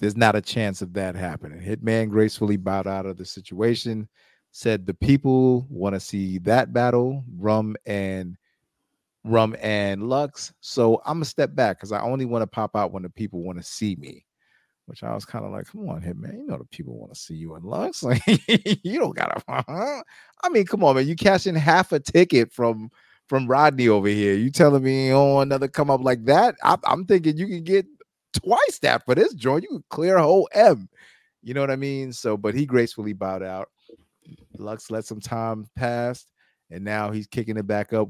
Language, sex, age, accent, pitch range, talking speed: English, male, 30-49, American, 100-125 Hz, 210 wpm